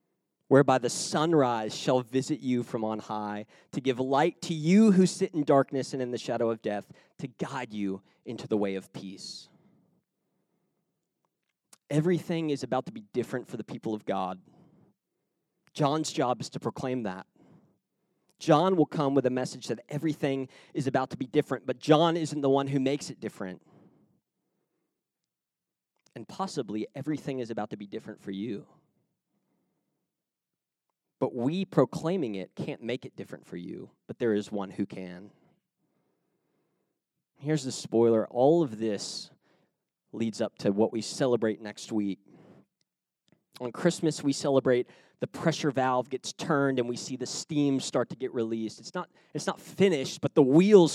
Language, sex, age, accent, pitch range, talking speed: English, male, 30-49, American, 120-160 Hz, 160 wpm